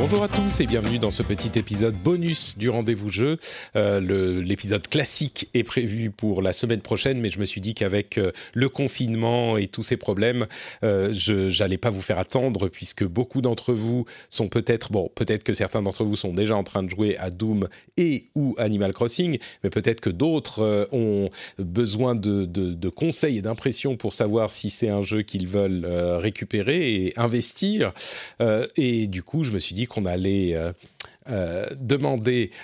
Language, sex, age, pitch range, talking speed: French, male, 40-59, 100-125 Hz, 190 wpm